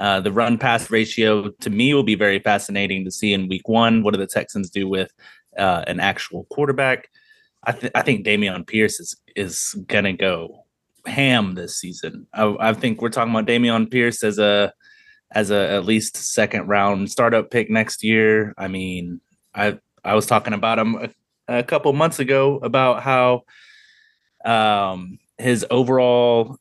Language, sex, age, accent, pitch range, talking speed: English, male, 20-39, American, 100-120 Hz, 160 wpm